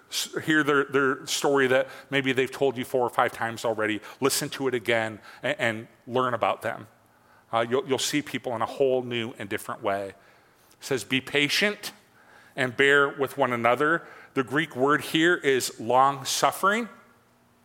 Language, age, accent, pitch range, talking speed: English, 40-59, American, 130-175 Hz, 170 wpm